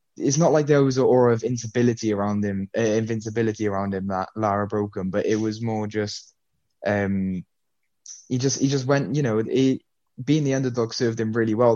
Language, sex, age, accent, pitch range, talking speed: English, male, 10-29, British, 105-120 Hz, 205 wpm